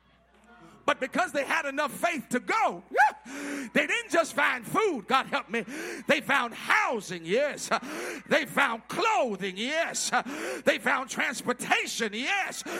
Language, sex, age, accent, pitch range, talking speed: English, male, 50-69, American, 275-380 Hz, 130 wpm